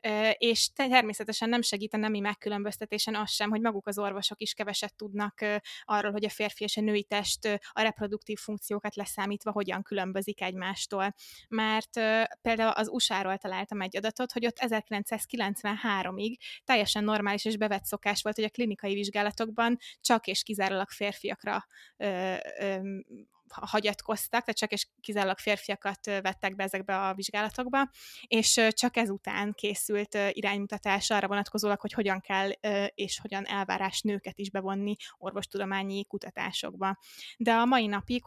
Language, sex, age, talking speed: Hungarian, female, 20-39, 150 wpm